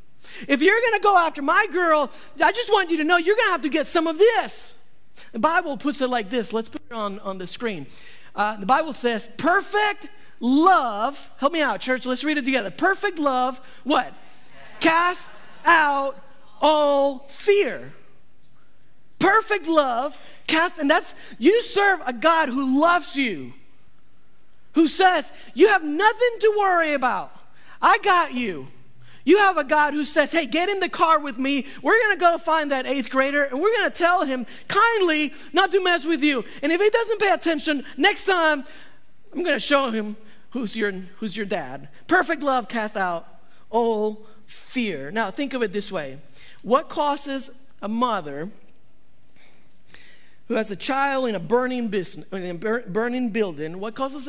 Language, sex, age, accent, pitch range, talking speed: English, male, 40-59, American, 230-335 Hz, 170 wpm